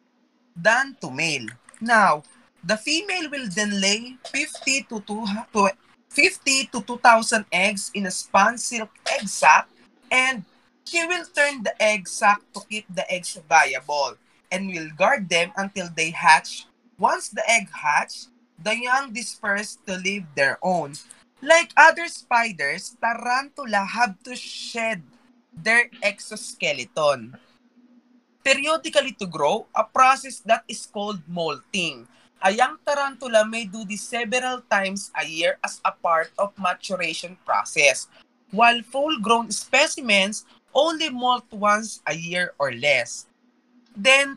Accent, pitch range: Filipino, 195-255 Hz